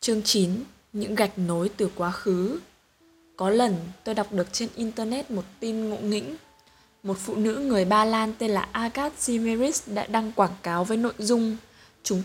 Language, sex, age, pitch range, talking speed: Vietnamese, female, 20-39, 175-230 Hz, 180 wpm